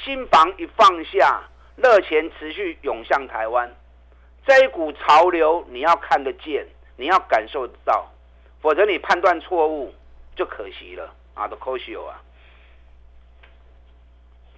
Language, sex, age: Chinese, male, 50-69